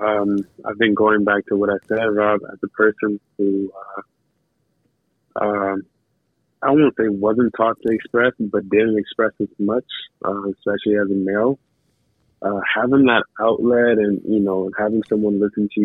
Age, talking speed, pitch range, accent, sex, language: 20-39, 165 wpm, 100-110 Hz, American, male, English